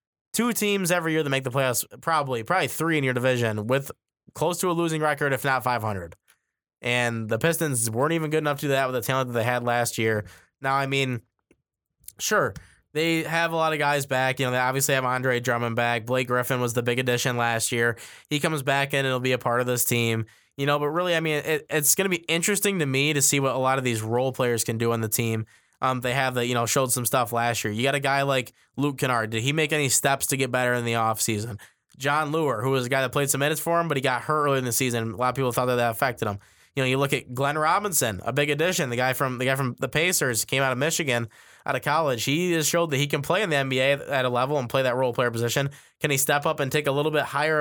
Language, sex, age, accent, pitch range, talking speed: English, male, 10-29, American, 120-150 Hz, 280 wpm